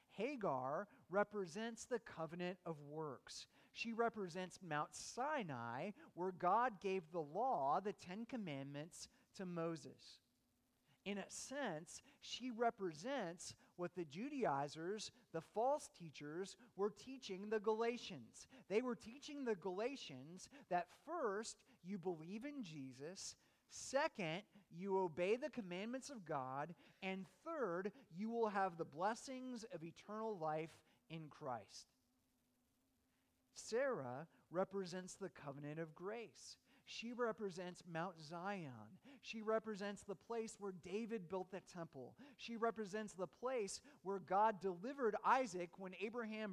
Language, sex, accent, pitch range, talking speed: English, male, American, 165-230 Hz, 120 wpm